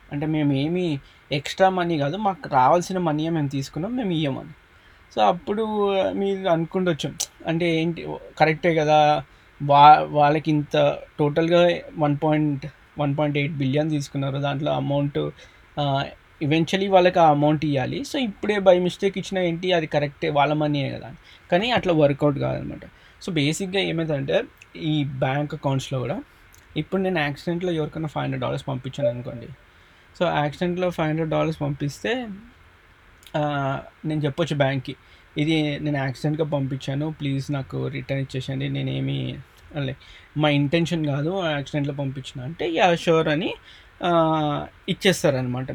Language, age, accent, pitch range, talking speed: Telugu, 20-39, native, 140-165 Hz, 130 wpm